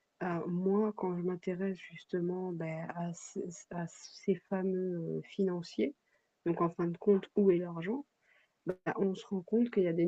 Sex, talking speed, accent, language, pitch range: female, 175 wpm, French, French, 165-195 Hz